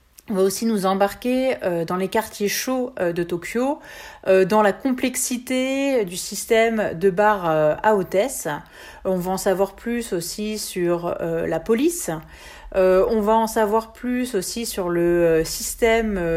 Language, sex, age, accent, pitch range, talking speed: French, female, 40-59, French, 190-240 Hz, 145 wpm